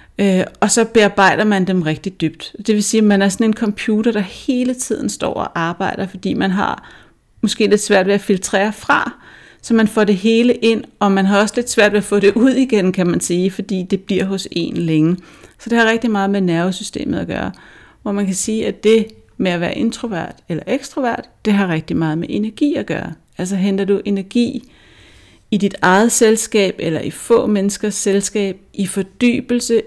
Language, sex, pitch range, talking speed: Danish, female, 185-220 Hz, 205 wpm